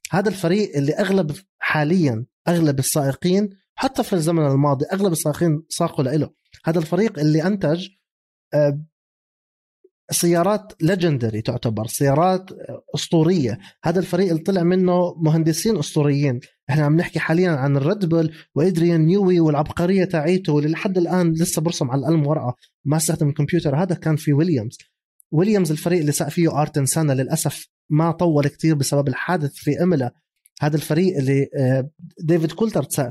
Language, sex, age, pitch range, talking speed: Arabic, male, 30-49, 140-175 Hz, 135 wpm